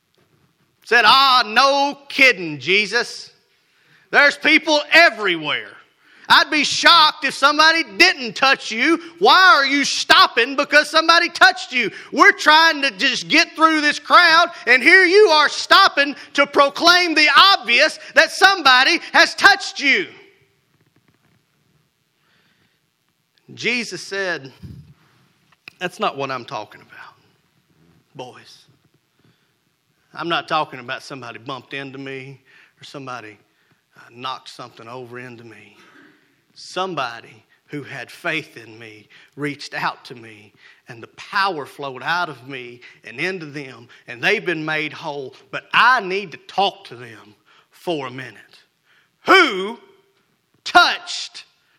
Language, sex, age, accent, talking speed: English, male, 40-59, American, 125 wpm